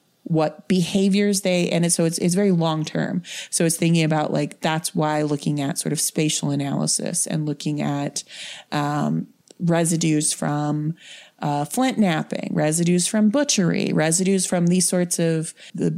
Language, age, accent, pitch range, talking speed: English, 30-49, American, 155-190 Hz, 150 wpm